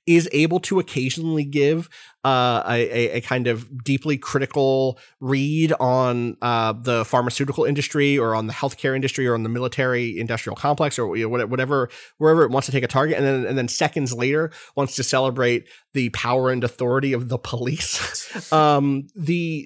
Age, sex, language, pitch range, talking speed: 30-49, male, English, 120-155 Hz, 170 wpm